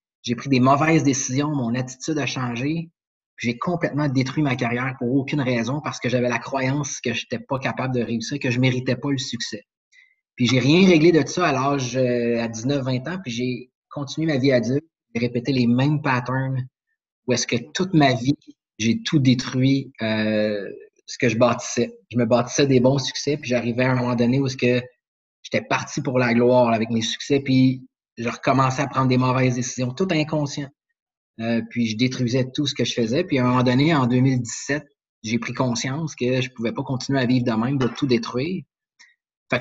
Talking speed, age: 210 wpm, 30-49